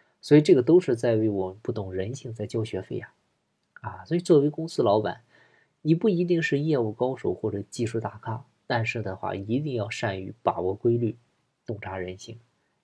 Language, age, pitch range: Chinese, 20-39, 100-125 Hz